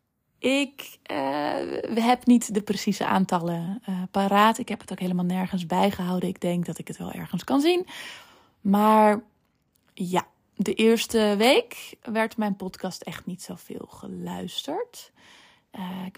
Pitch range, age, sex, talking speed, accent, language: 185-245 Hz, 20-39, female, 150 wpm, Dutch, Dutch